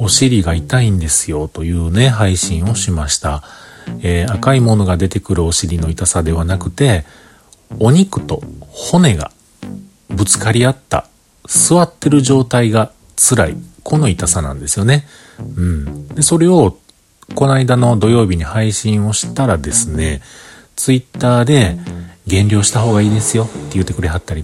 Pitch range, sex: 85-125 Hz, male